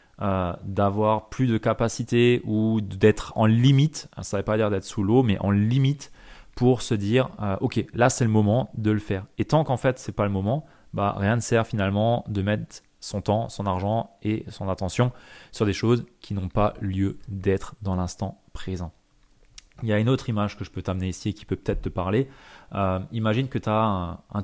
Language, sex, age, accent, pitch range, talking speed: French, male, 20-39, French, 100-120 Hz, 220 wpm